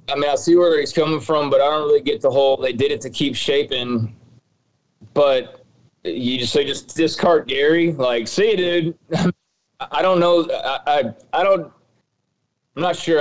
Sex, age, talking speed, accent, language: male, 20-39, 185 wpm, American, English